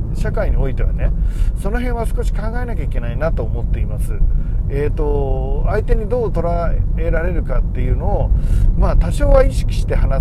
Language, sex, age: Japanese, male, 40-59